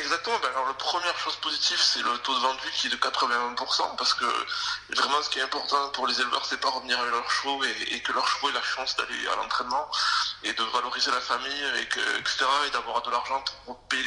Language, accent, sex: French, French, male